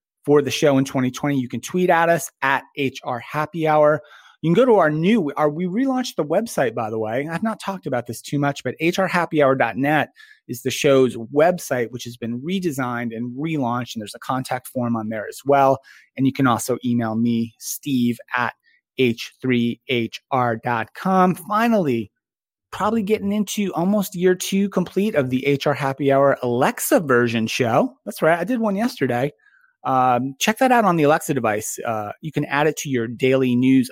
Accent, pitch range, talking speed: American, 125-185 Hz, 180 wpm